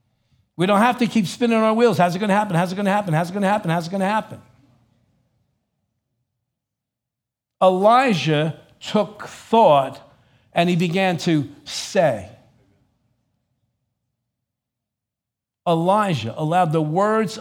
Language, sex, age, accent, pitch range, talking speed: English, male, 50-69, American, 130-190 Hz, 140 wpm